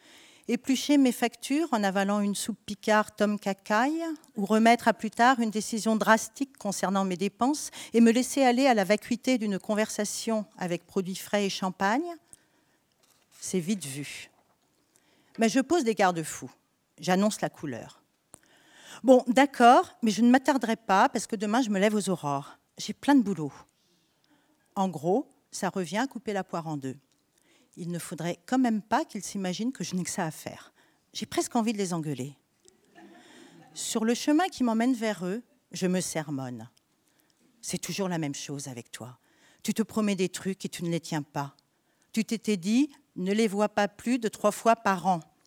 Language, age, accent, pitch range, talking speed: French, 50-69, French, 185-245 Hz, 180 wpm